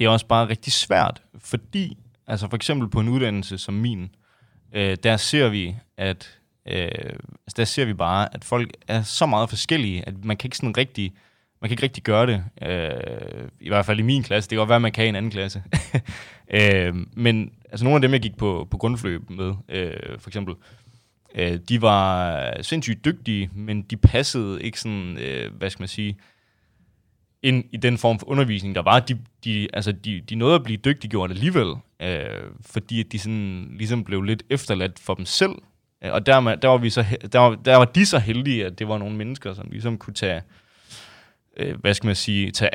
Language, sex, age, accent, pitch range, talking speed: Danish, male, 20-39, native, 100-120 Hz, 210 wpm